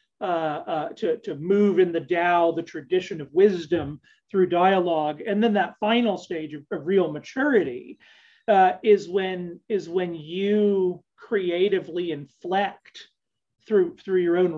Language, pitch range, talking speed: English, 180-230 Hz, 145 wpm